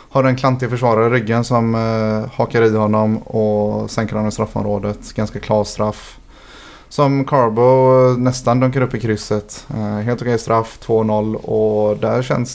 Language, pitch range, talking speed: Swedish, 105-120 Hz, 165 wpm